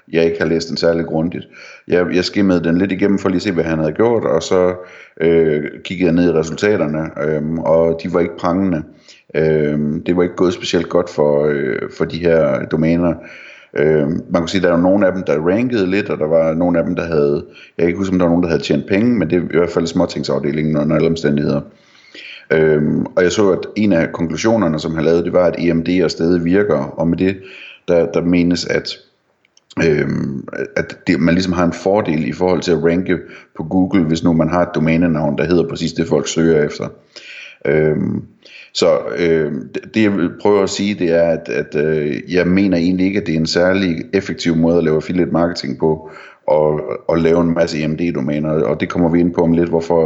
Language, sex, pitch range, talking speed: Danish, male, 80-90 Hz, 225 wpm